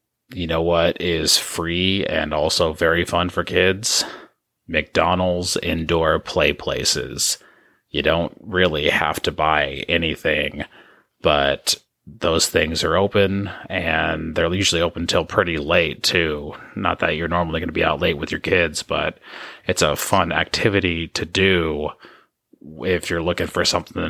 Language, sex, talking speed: English, male, 145 wpm